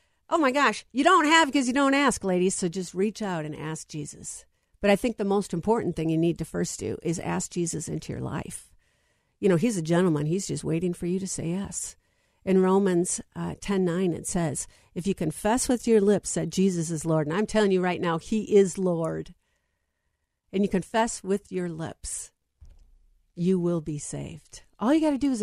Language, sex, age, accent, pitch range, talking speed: English, female, 50-69, American, 160-205 Hz, 215 wpm